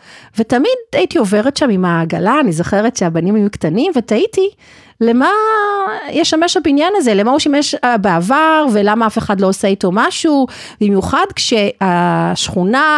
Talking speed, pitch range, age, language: 135 wpm, 185-290 Hz, 40-59, Hebrew